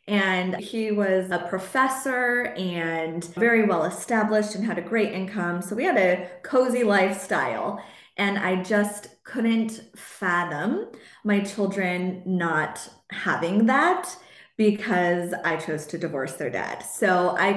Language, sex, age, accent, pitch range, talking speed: English, female, 20-39, American, 180-225 Hz, 135 wpm